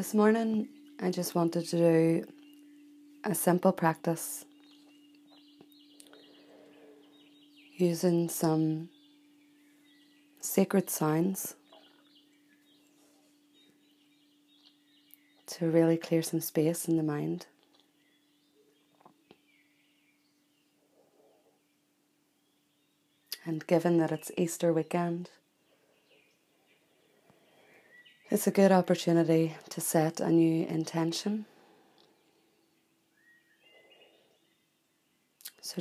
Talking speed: 65 wpm